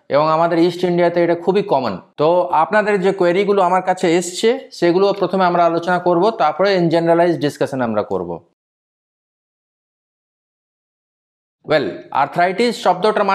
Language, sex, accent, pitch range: Bengali, male, native, 155-195 Hz